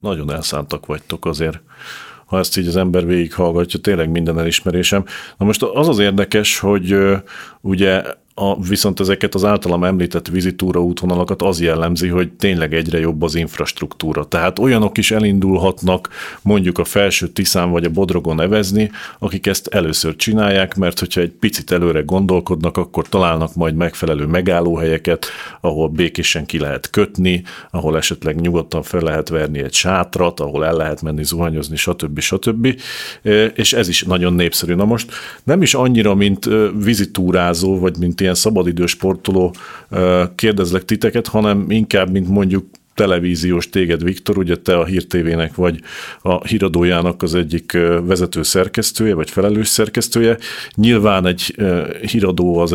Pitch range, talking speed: 85-100 Hz, 145 wpm